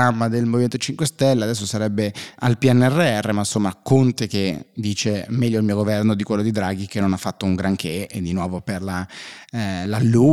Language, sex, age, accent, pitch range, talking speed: Italian, male, 30-49, native, 105-125 Hz, 190 wpm